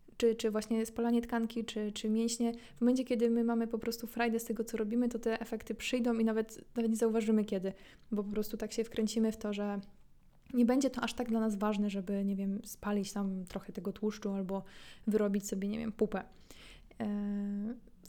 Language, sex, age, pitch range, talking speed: Polish, female, 20-39, 205-240 Hz, 205 wpm